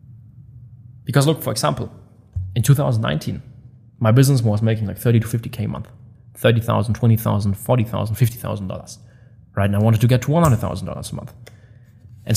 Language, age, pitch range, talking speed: English, 20-39, 110-125 Hz, 145 wpm